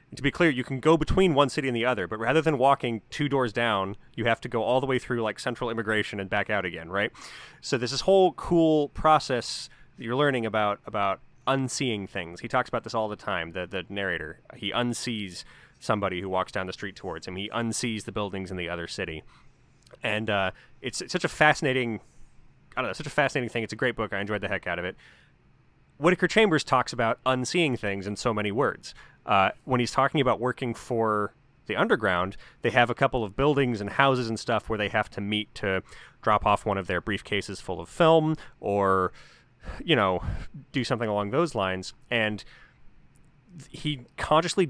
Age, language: 30-49, English